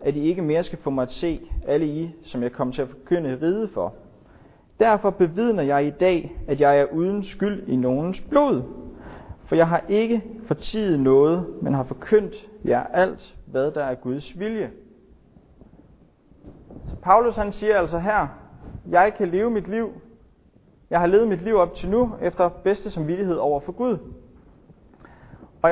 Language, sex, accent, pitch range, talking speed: Danish, male, native, 150-210 Hz, 175 wpm